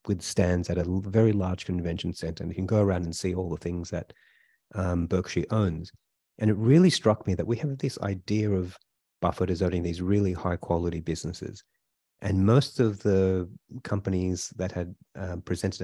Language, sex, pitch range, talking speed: English, male, 90-110 Hz, 185 wpm